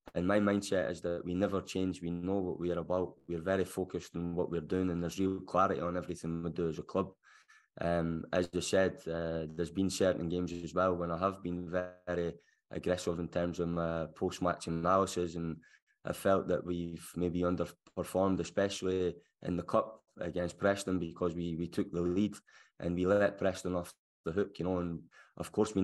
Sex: male